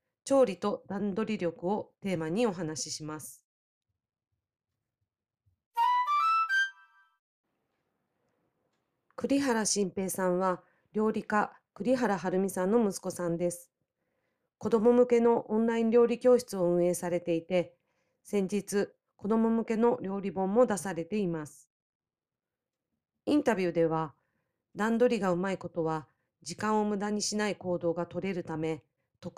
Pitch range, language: 165-215 Hz, Japanese